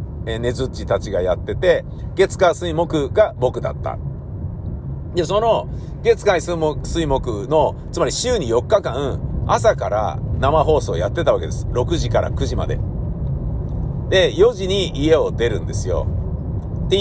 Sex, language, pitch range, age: male, Japanese, 125-195 Hz, 50-69